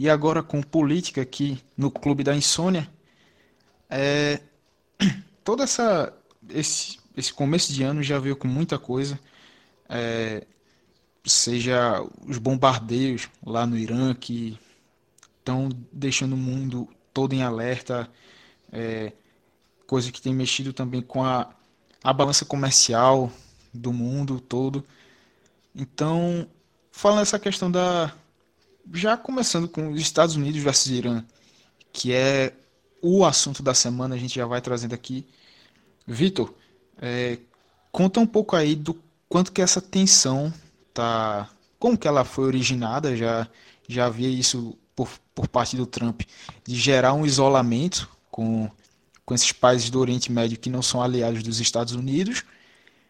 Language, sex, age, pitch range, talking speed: Portuguese, male, 20-39, 125-155 Hz, 135 wpm